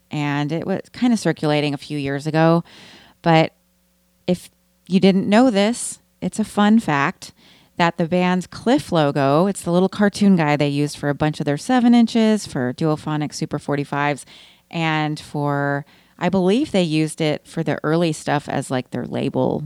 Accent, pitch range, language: American, 145-190 Hz, English